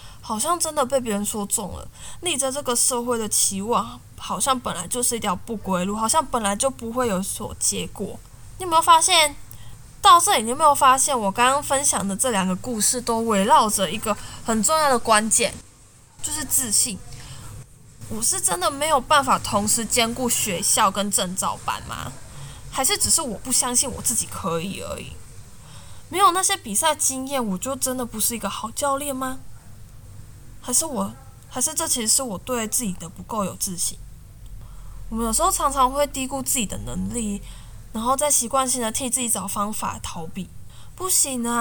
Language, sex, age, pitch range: Chinese, female, 10-29, 195-280 Hz